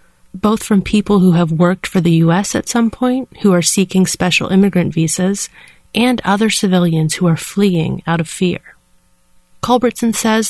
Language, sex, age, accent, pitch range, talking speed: English, female, 30-49, American, 170-215 Hz, 165 wpm